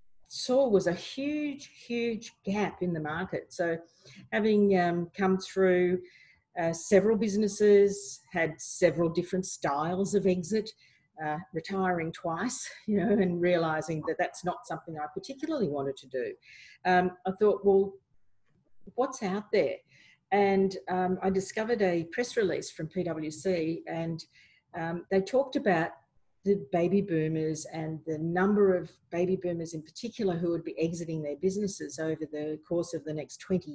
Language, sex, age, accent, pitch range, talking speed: English, female, 50-69, Australian, 160-195 Hz, 150 wpm